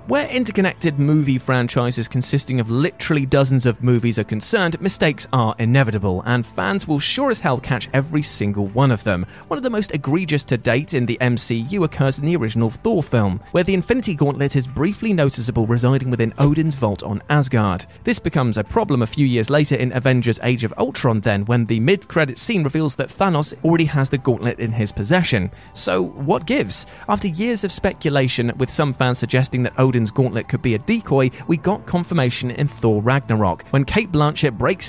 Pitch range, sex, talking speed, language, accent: 115-155 Hz, male, 195 wpm, English, British